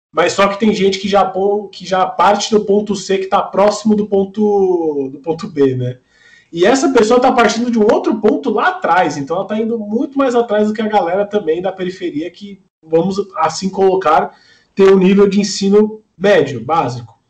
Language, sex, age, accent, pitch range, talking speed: Portuguese, male, 20-39, Brazilian, 145-205 Hz, 200 wpm